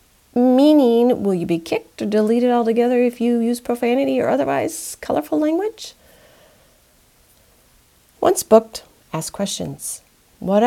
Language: English